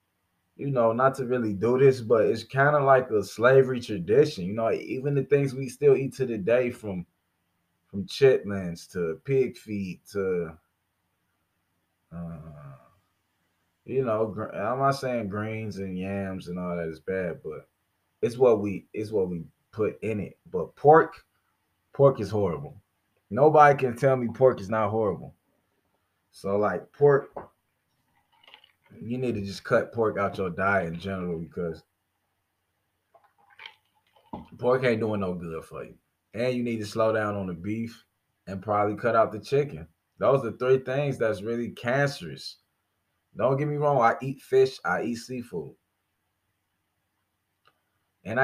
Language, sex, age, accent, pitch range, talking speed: English, male, 20-39, American, 95-125 Hz, 155 wpm